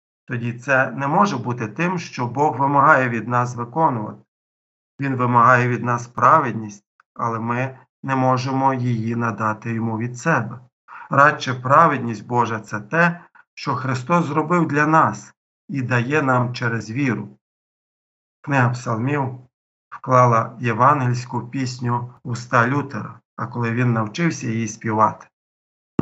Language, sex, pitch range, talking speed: Ukrainian, male, 115-135 Hz, 130 wpm